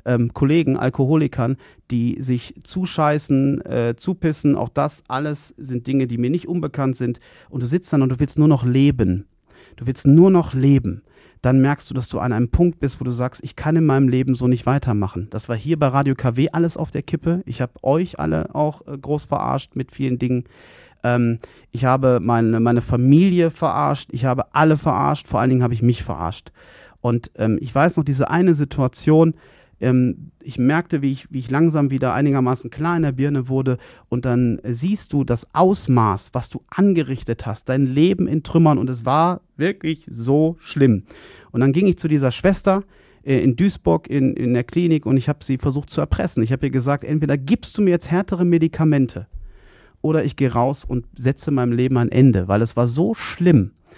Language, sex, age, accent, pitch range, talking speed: German, male, 30-49, German, 125-160 Hz, 195 wpm